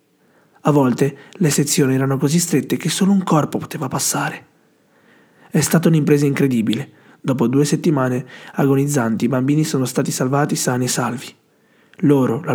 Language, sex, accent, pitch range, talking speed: Italian, male, native, 130-160 Hz, 150 wpm